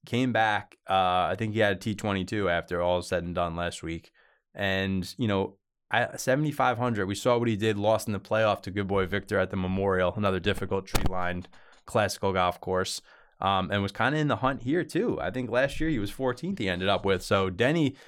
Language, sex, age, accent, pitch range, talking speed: English, male, 20-39, American, 90-115 Hz, 215 wpm